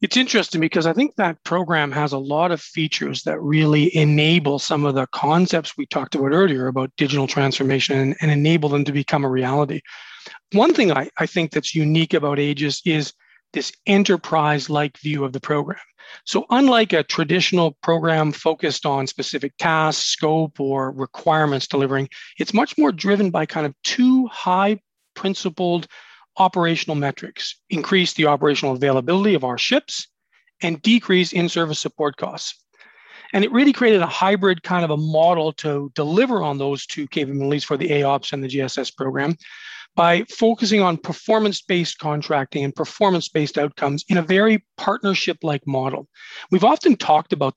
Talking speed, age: 160 wpm, 40-59